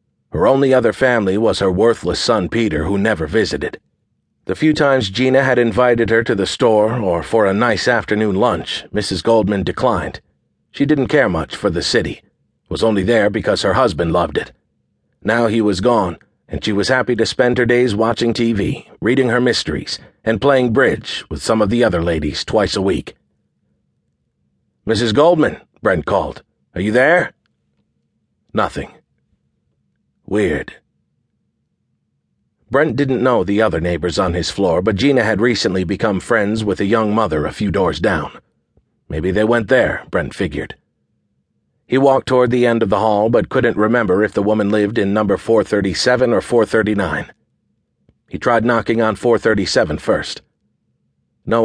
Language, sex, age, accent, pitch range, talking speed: English, male, 50-69, American, 105-120 Hz, 165 wpm